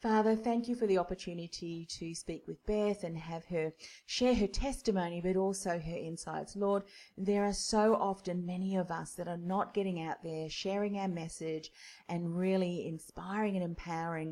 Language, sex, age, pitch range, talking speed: English, female, 40-59, 160-190 Hz, 175 wpm